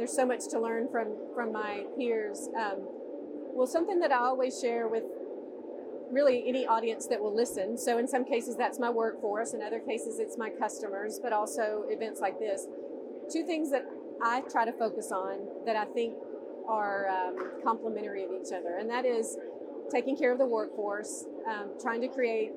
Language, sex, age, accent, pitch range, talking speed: English, female, 40-59, American, 225-285 Hz, 185 wpm